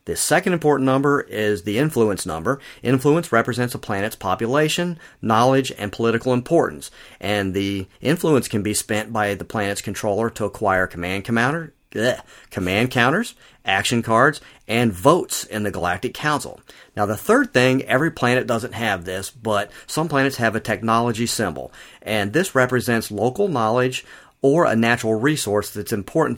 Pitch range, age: 105-125 Hz, 40-59